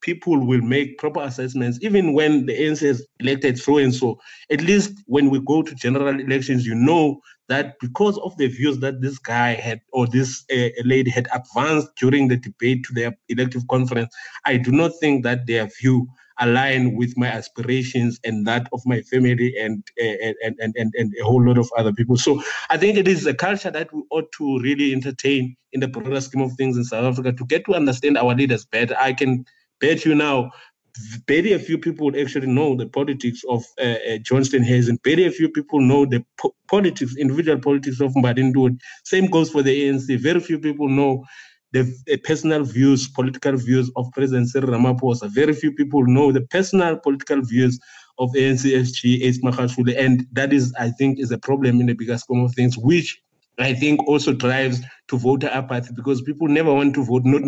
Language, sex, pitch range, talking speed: English, male, 125-145 Hz, 200 wpm